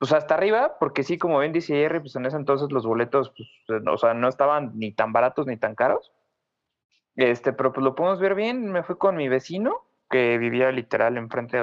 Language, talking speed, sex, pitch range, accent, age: Spanish, 220 wpm, male, 125-165 Hz, Mexican, 20-39